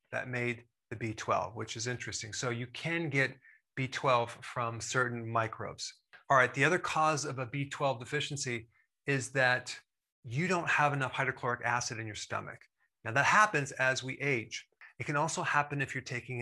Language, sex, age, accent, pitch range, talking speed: English, male, 30-49, American, 120-145 Hz, 175 wpm